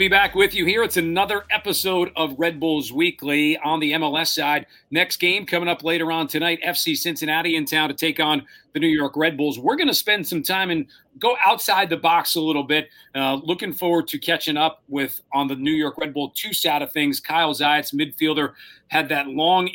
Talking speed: 220 wpm